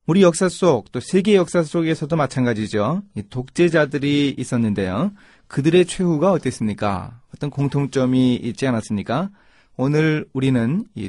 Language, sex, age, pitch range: Korean, male, 30-49, 115-160 Hz